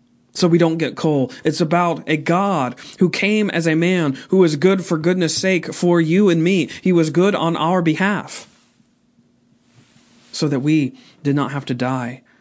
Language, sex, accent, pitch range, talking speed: English, male, American, 125-150 Hz, 185 wpm